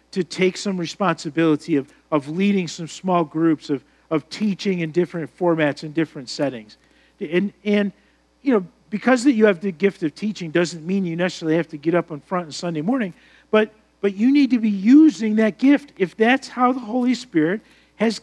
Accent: American